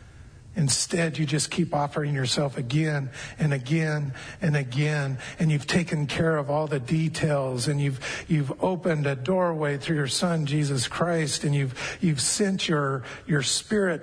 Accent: American